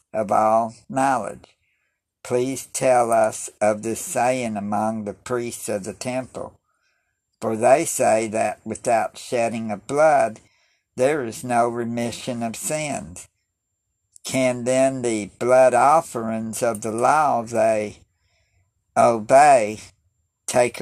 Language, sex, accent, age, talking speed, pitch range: English, male, American, 60-79, 115 wpm, 105-125 Hz